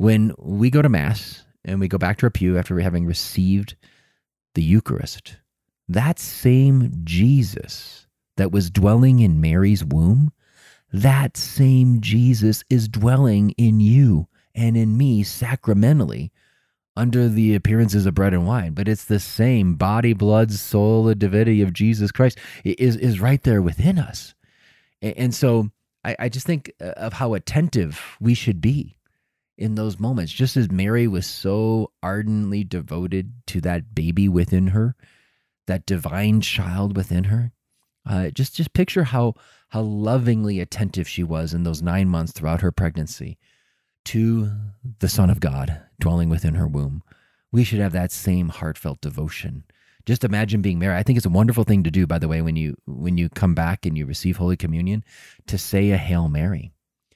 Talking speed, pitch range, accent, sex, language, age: 165 wpm, 90-120 Hz, American, male, English, 30-49